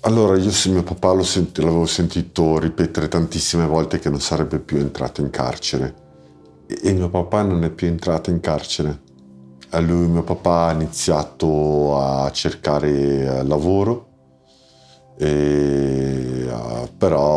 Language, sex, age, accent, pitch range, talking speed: Italian, male, 50-69, native, 70-85 Hz, 145 wpm